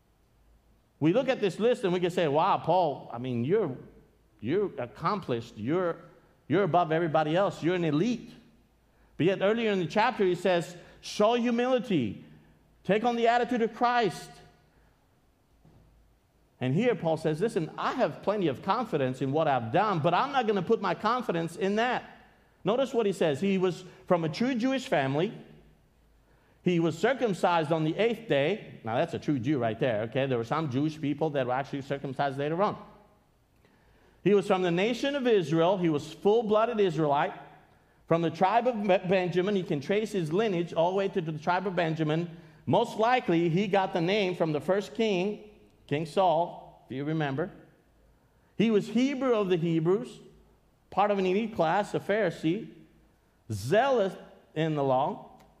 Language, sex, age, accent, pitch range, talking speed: English, male, 50-69, American, 155-210 Hz, 175 wpm